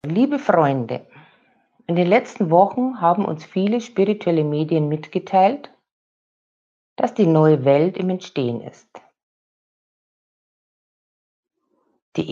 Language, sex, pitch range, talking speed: German, female, 145-190 Hz, 95 wpm